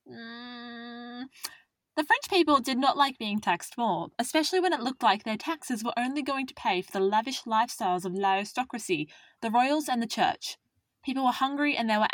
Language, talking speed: English, 200 wpm